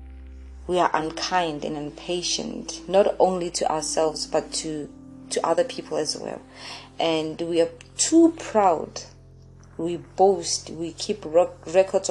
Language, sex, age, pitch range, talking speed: English, female, 20-39, 155-190 Hz, 130 wpm